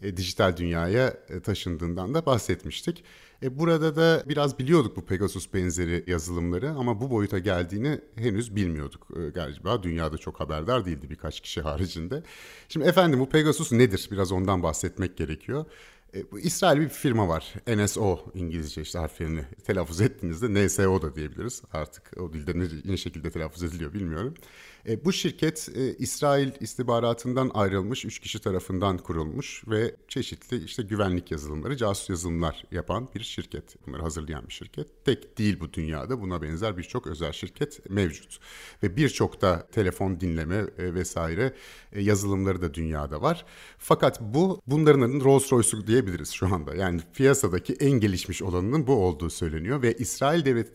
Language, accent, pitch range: Turkish, native, 85-125 Hz